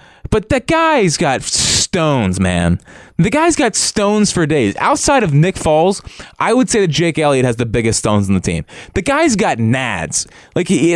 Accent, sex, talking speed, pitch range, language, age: American, male, 190 wpm, 105-155 Hz, English, 20-39